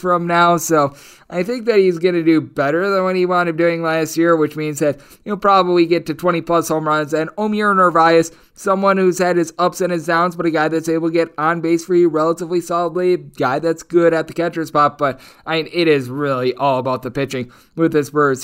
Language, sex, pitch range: English, male, 145-185 Hz